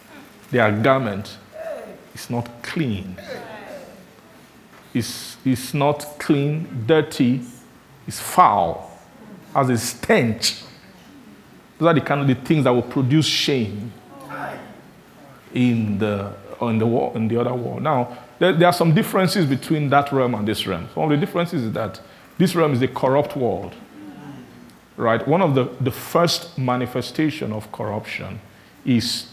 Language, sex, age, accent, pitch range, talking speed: English, male, 50-69, Nigerian, 120-160 Hz, 140 wpm